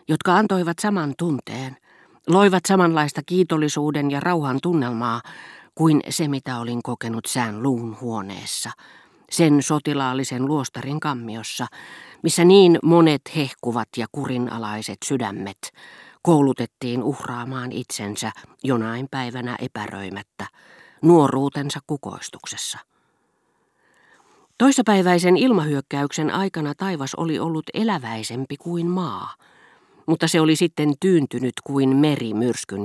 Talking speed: 100 wpm